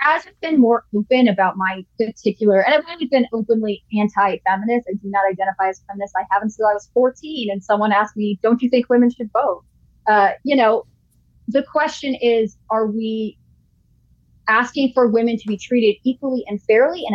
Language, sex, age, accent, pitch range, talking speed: English, female, 20-39, American, 200-240 Hz, 185 wpm